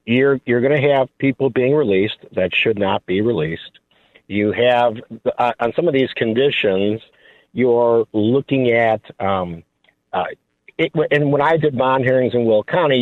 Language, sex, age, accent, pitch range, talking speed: English, male, 50-69, American, 120-140 Hz, 165 wpm